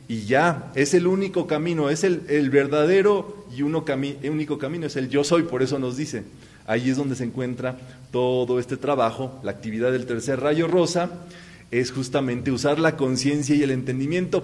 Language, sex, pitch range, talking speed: Spanish, male, 125-170 Hz, 185 wpm